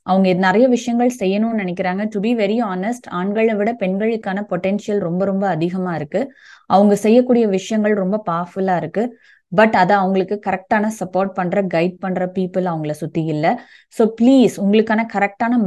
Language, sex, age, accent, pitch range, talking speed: Tamil, female, 20-39, native, 180-225 Hz, 150 wpm